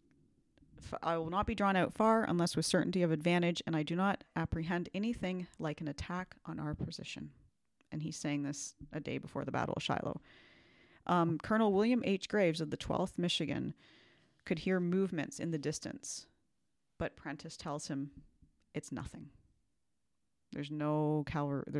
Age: 40-59